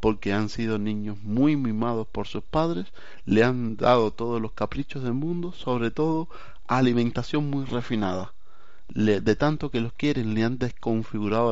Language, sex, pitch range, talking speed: Spanish, male, 110-135 Hz, 160 wpm